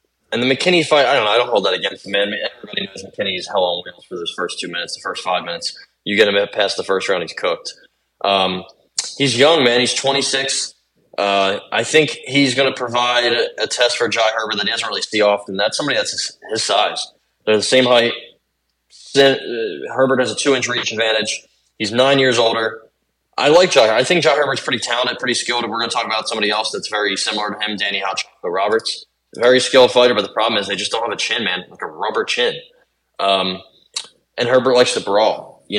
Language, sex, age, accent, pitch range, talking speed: English, male, 20-39, American, 100-135 Hz, 225 wpm